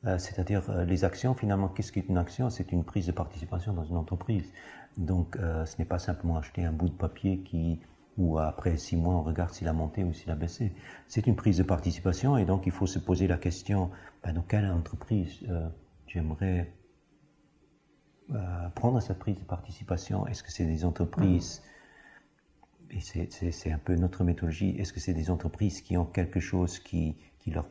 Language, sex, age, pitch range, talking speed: French, male, 50-69, 85-95 Hz, 195 wpm